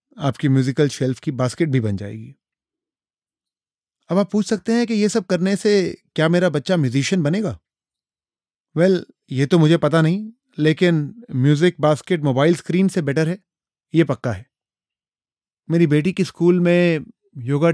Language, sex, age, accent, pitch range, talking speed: Hindi, male, 30-49, native, 130-175 Hz, 160 wpm